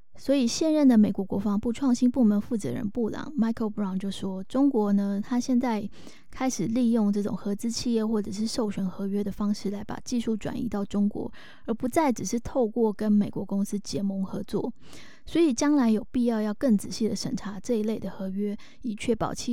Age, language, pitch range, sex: 20-39, Chinese, 205-250 Hz, female